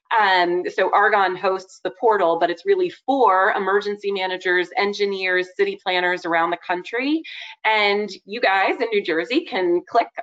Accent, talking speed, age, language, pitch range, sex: American, 155 wpm, 30-49, English, 175-255 Hz, female